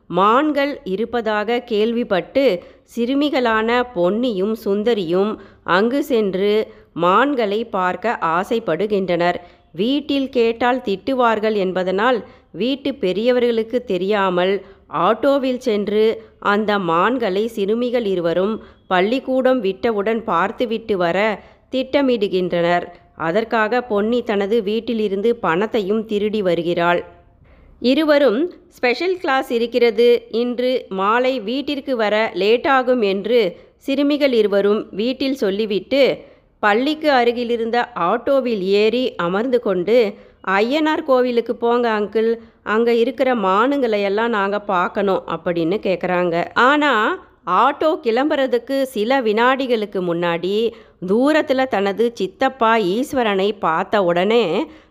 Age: 30-49